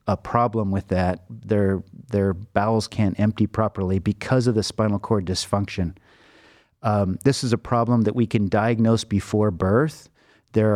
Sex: male